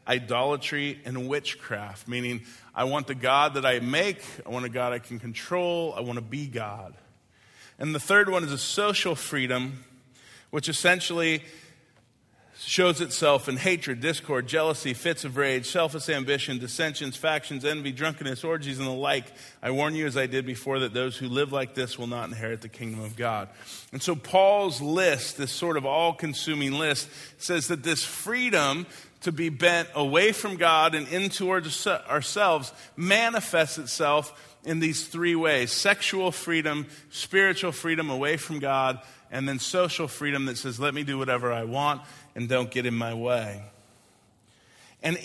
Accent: American